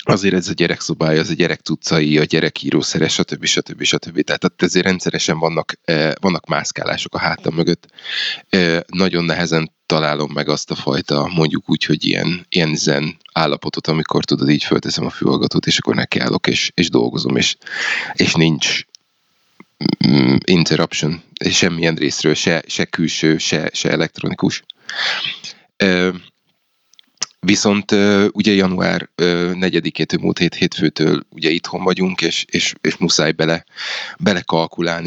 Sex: male